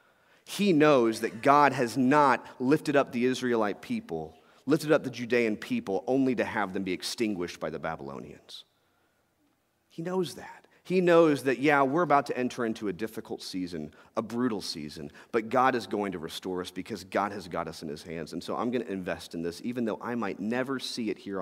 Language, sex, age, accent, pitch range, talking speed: English, male, 40-59, American, 110-155 Hz, 205 wpm